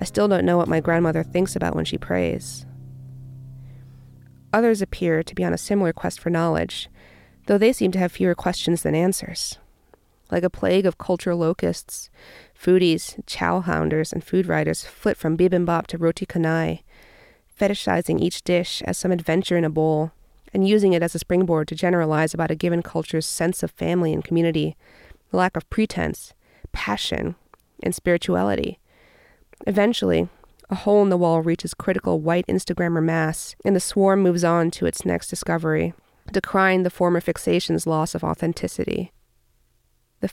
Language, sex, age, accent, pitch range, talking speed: English, female, 30-49, American, 130-185 Hz, 165 wpm